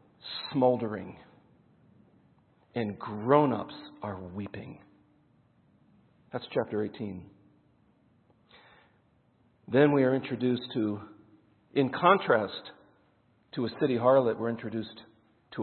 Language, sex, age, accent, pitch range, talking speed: English, male, 50-69, American, 115-150 Hz, 85 wpm